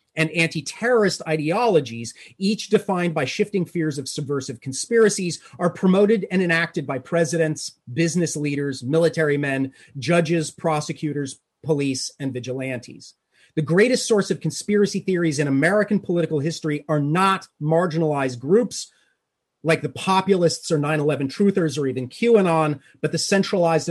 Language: English